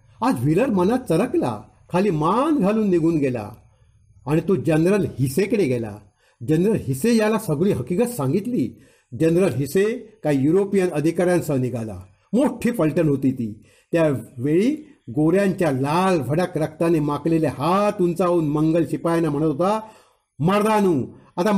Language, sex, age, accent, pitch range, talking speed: Marathi, male, 60-79, native, 140-205 Hz, 125 wpm